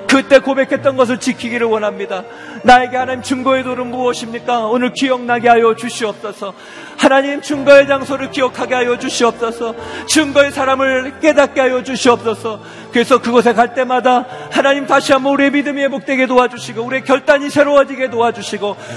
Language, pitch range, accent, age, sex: Korean, 240-270 Hz, native, 40-59, male